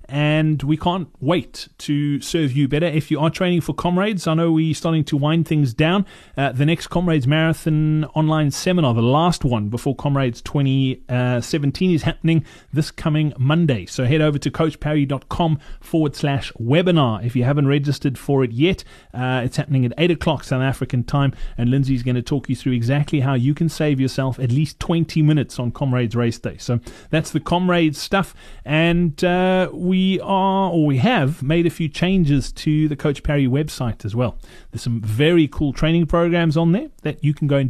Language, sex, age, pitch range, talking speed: English, male, 30-49, 135-165 Hz, 195 wpm